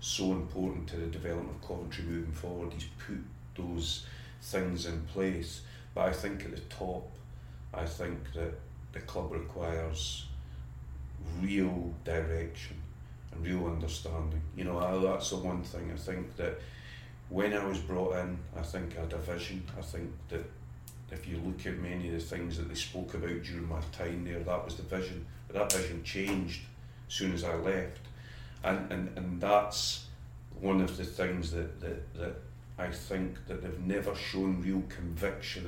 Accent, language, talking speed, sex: British, English, 175 wpm, male